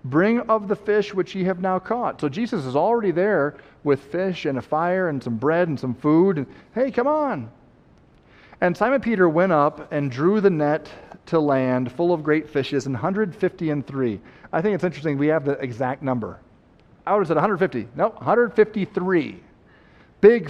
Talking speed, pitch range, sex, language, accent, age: 185 wpm, 130-180 Hz, male, English, American, 40-59